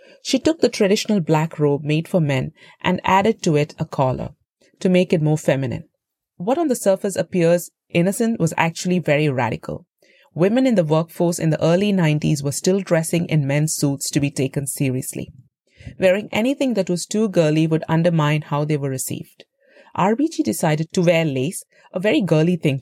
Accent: Indian